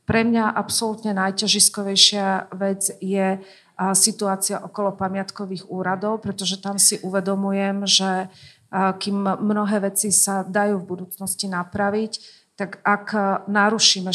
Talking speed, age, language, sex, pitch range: 110 wpm, 40-59, Slovak, female, 190-205 Hz